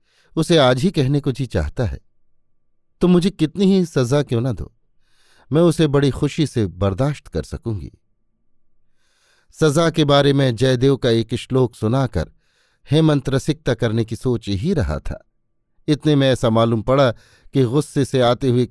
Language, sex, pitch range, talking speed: Hindi, male, 115-145 Hz, 165 wpm